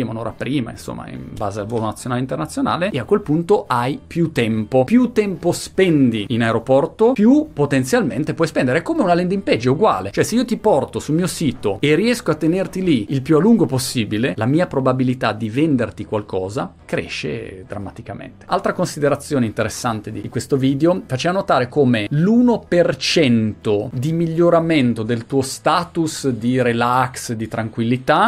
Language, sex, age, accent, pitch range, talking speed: Italian, male, 30-49, native, 120-160 Hz, 165 wpm